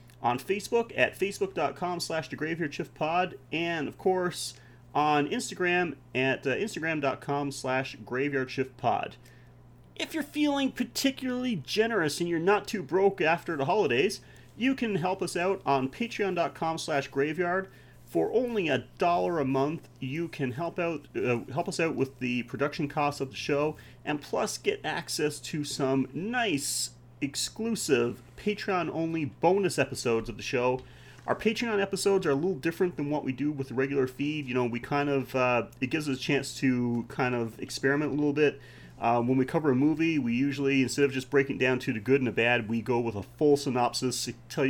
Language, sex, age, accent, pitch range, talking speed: English, male, 30-49, American, 130-170 Hz, 180 wpm